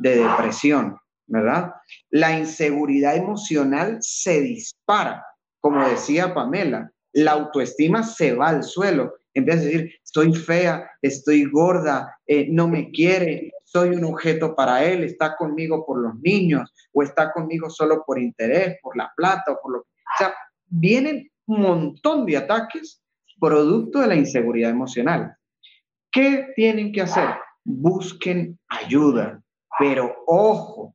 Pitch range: 150-240 Hz